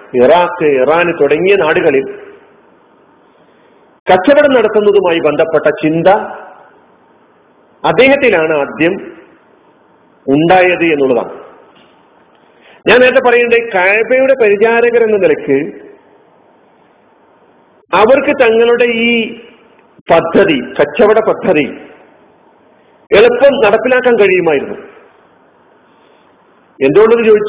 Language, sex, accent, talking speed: Malayalam, male, native, 65 wpm